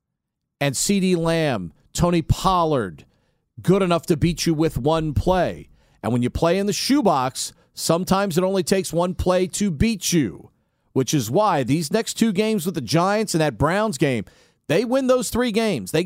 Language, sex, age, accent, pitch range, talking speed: English, male, 40-59, American, 155-215 Hz, 185 wpm